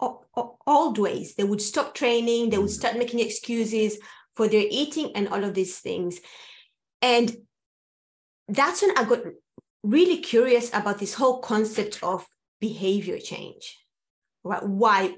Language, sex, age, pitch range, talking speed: English, female, 20-39, 200-240 Hz, 135 wpm